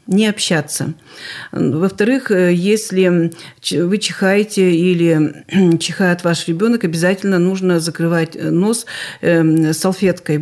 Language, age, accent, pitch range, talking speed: Russian, 40-59, native, 165-200 Hz, 85 wpm